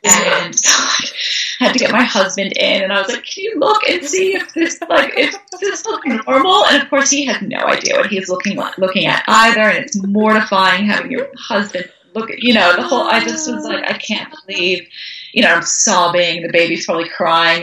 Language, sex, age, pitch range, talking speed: English, female, 30-49, 190-280 Hz, 220 wpm